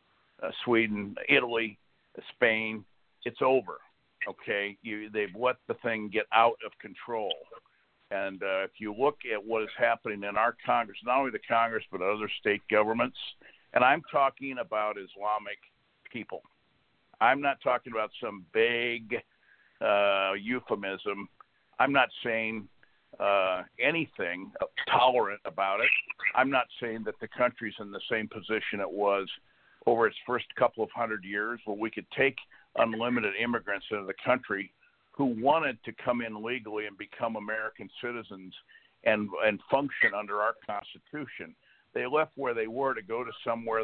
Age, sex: 60-79, male